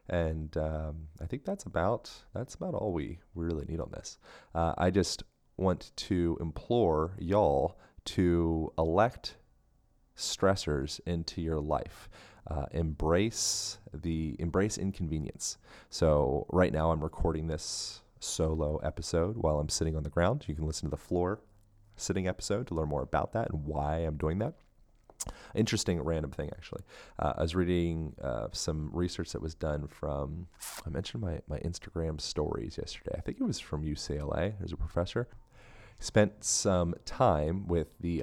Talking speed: 160 wpm